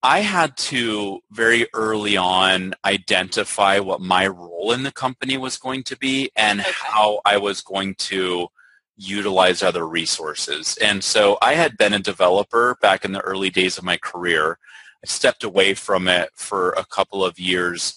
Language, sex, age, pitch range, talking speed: English, male, 30-49, 95-130 Hz, 170 wpm